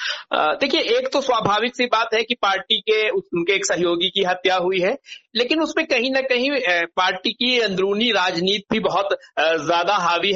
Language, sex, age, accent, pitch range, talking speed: Hindi, male, 60-79, native, 180-225 Hz, 180 wpm